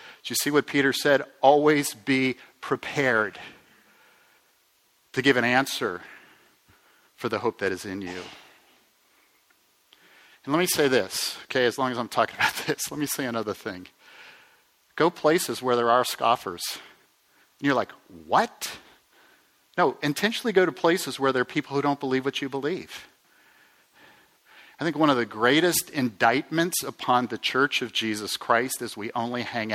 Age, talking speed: 50-69, 160 wpm